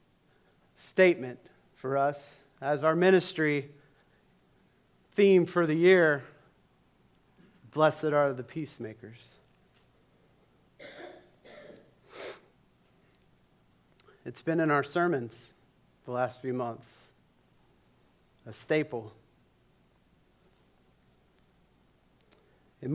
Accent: American